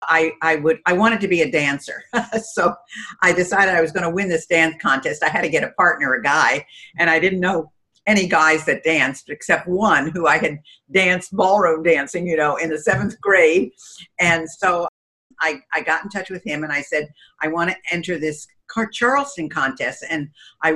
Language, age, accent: English, 50-69, American